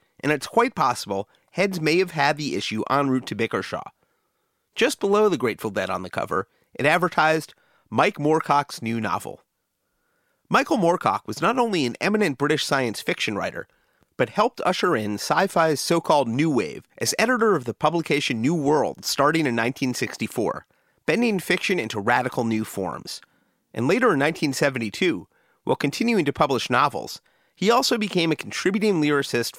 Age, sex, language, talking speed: 30-49, male, English, 160 wpm